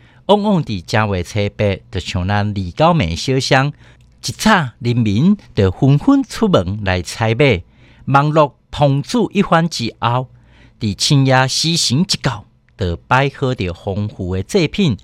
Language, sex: Chinese, male